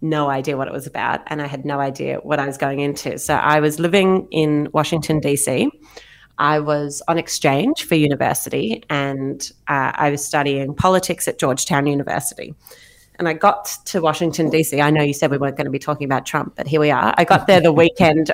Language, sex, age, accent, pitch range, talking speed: English, female, 30-49, Australian, 145-165 Hz, 215 wpm